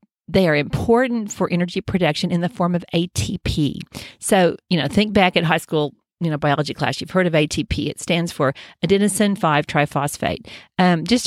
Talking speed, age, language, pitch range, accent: 175 wpm, 40-59, English, 155-205 Hz, American